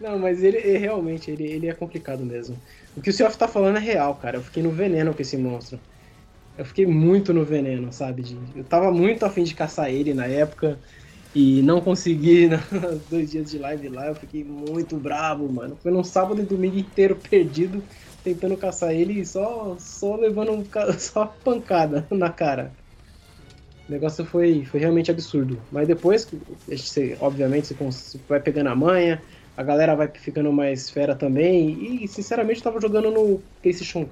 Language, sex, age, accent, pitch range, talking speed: Portuguese, male, 20-39, Brazilian, 145-195 Hz, 185 wpm